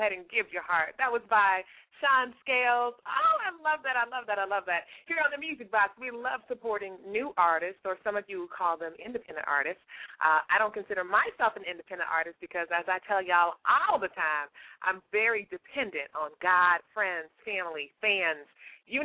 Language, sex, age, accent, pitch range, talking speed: English, female, 30-49, American, 180-270 Hz, 195 wpm